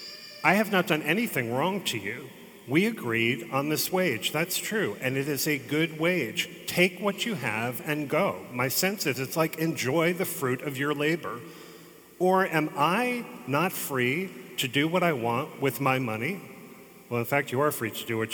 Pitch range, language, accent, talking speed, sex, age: 120-165 Hz, English, American, 195 wpm, male, 40-59